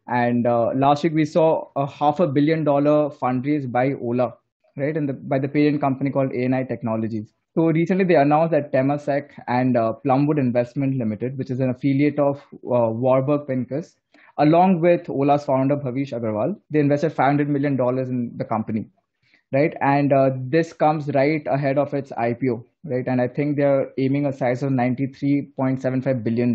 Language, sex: English, male